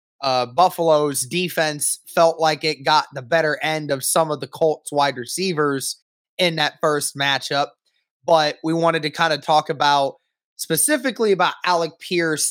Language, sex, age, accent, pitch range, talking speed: English, male, 20-39, American, 145-170 Hz, 155 wpm